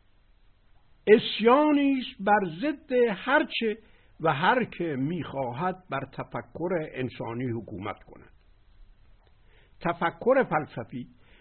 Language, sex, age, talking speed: Persian, male, 60-79, 85 wpm